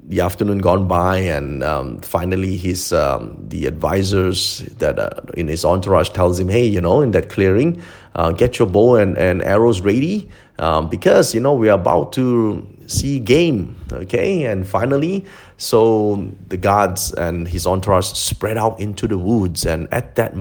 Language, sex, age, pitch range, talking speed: English, male, 30-49, 95-120 Hz, 175 wpm